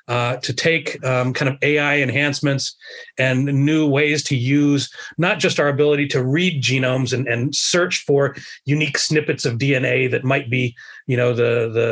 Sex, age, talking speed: male, 30-49, 175 wpm